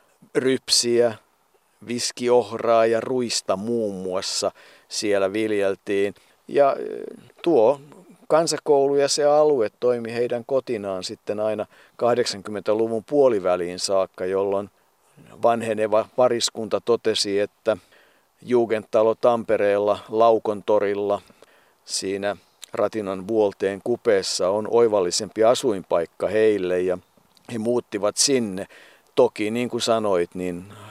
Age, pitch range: 50-69, 100-130 Hz